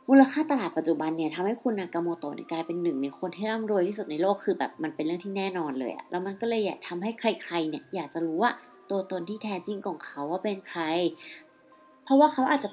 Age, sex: 30-49, female